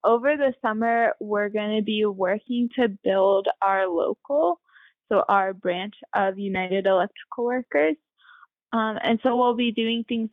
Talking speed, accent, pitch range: 150 wpm, American, 190-235 Hz